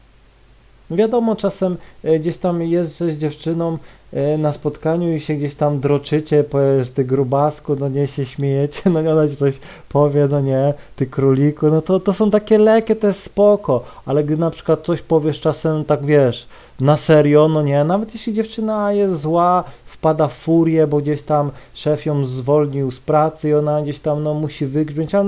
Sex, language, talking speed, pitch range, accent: male, Polish, 185 wpm, 140-170 Hz, native